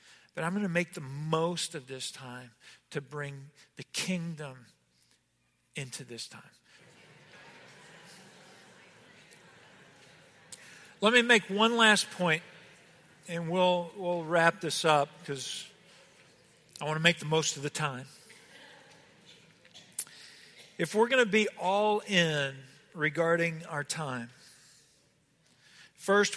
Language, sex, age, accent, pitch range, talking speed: English, male, 50-69, American, 140-180 Hz, 105 wpm